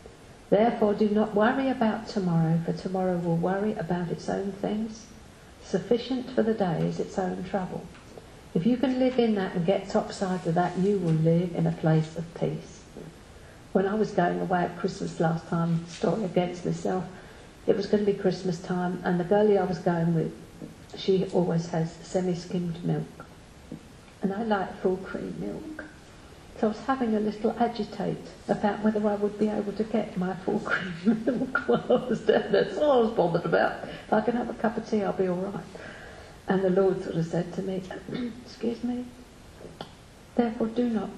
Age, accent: 50-69, British